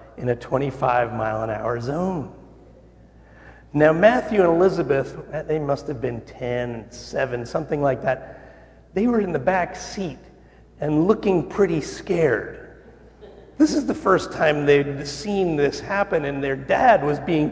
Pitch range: 130-165 Hz